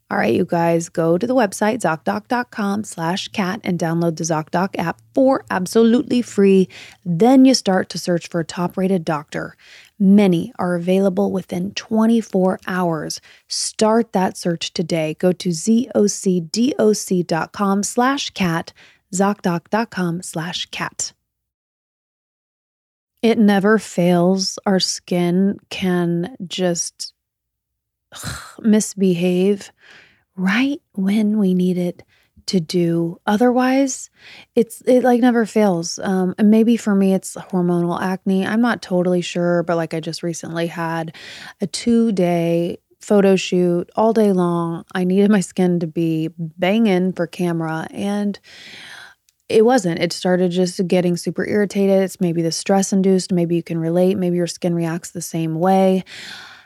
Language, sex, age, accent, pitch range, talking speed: English, female, 20-39, American, 175-205 Hz, 135 wpm